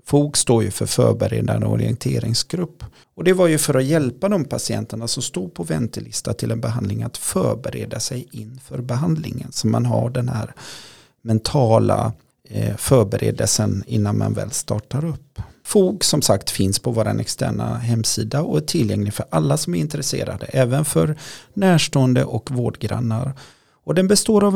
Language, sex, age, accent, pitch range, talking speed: English, male, 40-59, Swedish, 110-150 Hz, 155 wpm